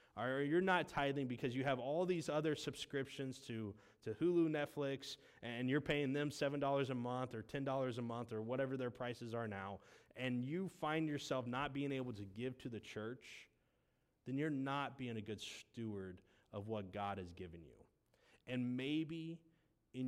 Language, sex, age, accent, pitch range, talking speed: English, male, 20-39, American, 110-145 Hz, 180 wpm